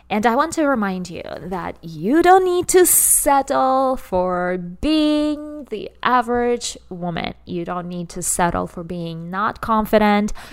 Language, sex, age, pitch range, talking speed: English, female, 20-39, 185-240 Hz, 150 wpm